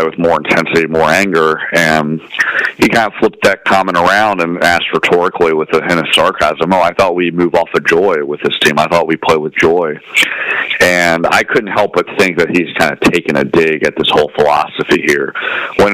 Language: English